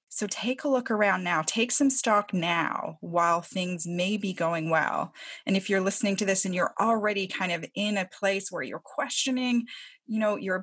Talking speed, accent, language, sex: 205 wpm, American, English, female